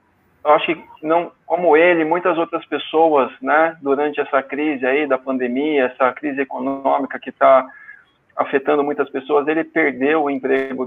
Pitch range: 130-155 Hz